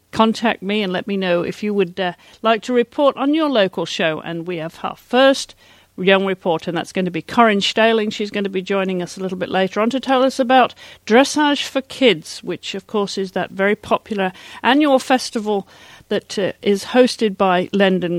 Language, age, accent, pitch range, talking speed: English, 50-69, British, 175-225 Hz, 210 wpm